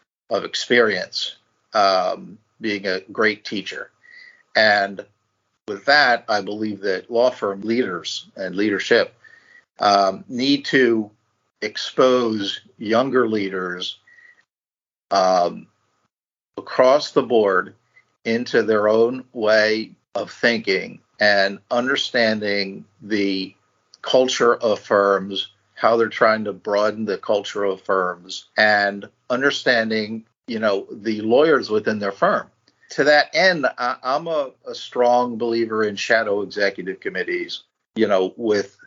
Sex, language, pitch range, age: male, English, 100-125 Hz, 50-69